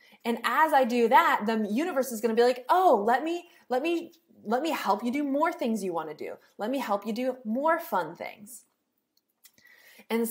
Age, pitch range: 20-39, 210-275 Hz